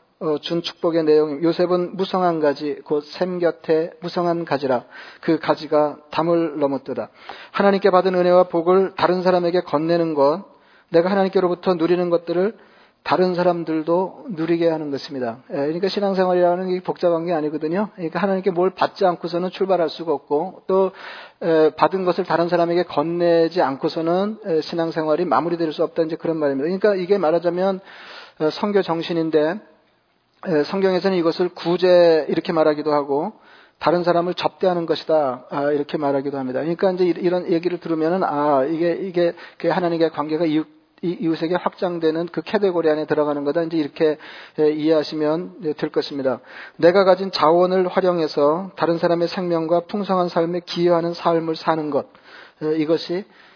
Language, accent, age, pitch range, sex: Korean, native, 40-59, 155-180 Hz, male